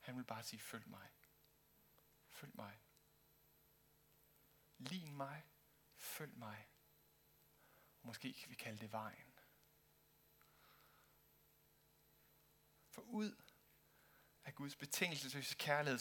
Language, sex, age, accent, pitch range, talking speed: Danish, male, 60-79, native, 115-150 Hz, 90 wpm